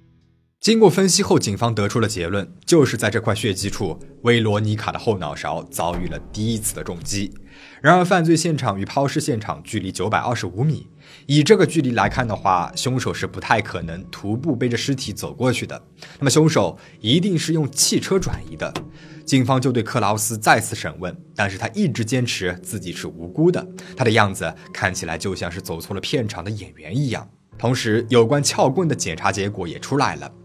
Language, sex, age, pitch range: Chinese, male, 20-39, 105-155 Hz